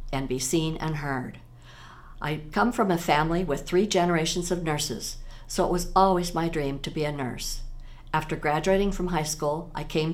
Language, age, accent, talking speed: English, 60-79, American, 190 wpm